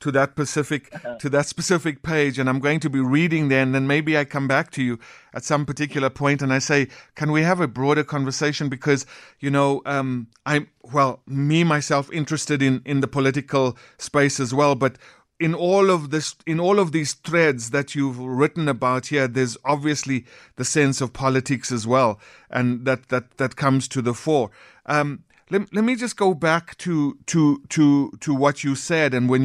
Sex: male